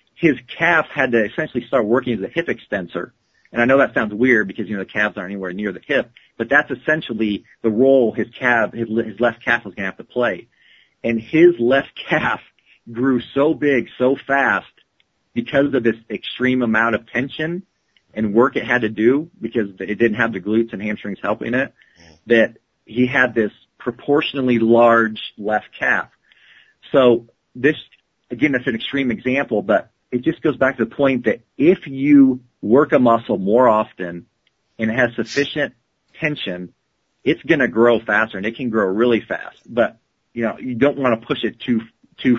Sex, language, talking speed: male, English, 190 wpm